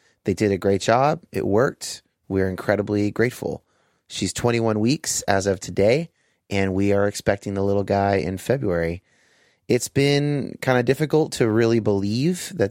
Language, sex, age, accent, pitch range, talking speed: English, male, 30-49, American, 95-125 Hz, 160 wpm